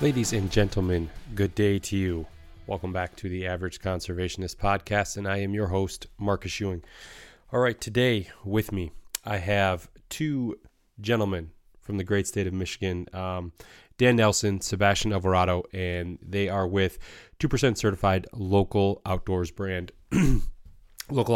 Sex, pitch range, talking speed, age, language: male, 90-105 Hz, 145 wpm, 30-49, English